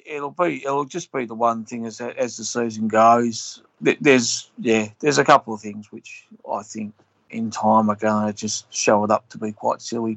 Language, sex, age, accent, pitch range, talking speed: English, male, 30-49, British, 105-115 Hz, 210 wpm